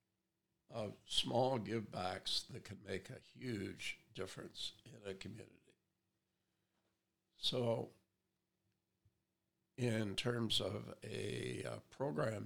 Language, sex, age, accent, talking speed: English, male, 60-79, American, 90 wpm